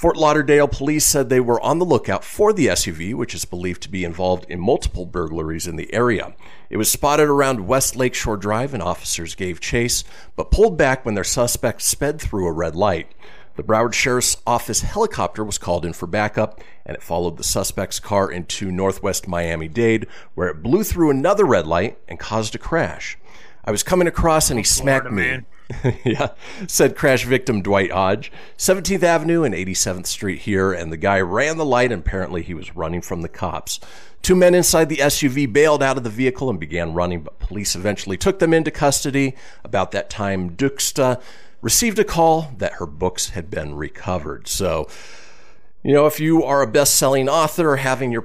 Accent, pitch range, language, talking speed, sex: American, 90-140 Hz, English, 190 wpm, male